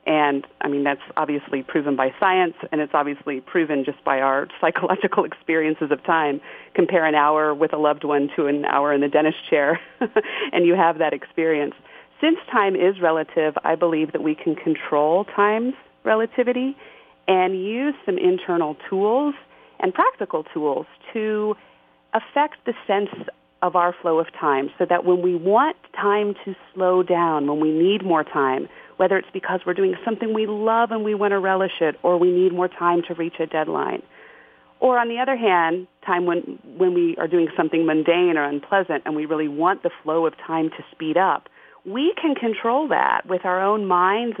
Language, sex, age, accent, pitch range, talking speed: English, female, 40-59, American, 160-220 Hz, 185 wpm